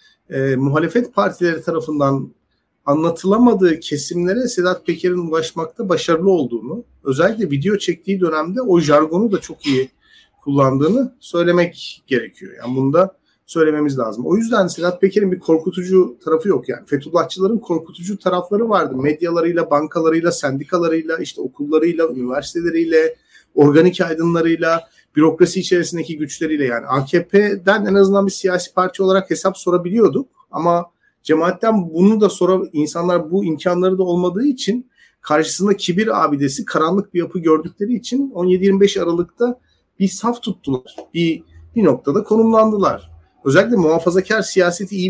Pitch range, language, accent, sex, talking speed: 155-195 Hz, Turkish, native, male, 125 wpm